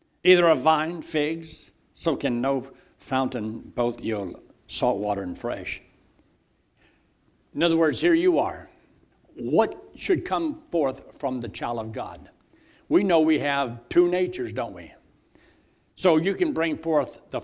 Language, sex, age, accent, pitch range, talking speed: English, male, 60-79, American, 125-180 Hz, 150 wpm